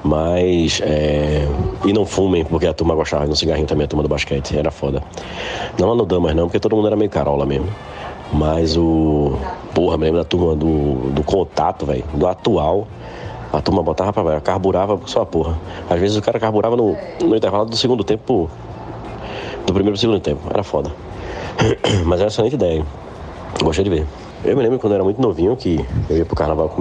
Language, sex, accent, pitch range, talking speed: Portuguese, male, Brazilian, 75-95 Hz, 205 wpm